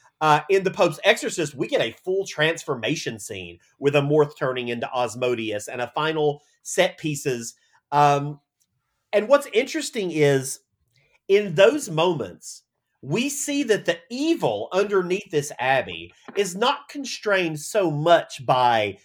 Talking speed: 140 wpm